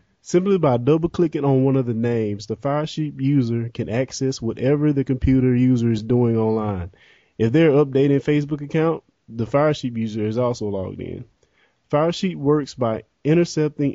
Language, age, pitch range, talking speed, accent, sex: English, 20-39, 115-140 Hz, 165 wpm, American, male